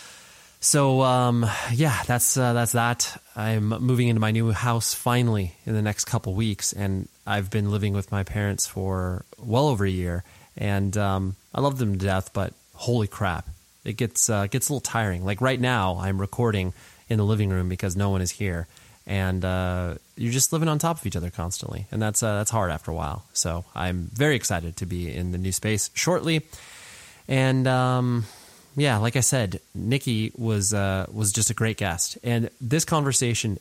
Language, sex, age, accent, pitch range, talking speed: English, male, 20-39, American, 95-120 Hz, 195 wpm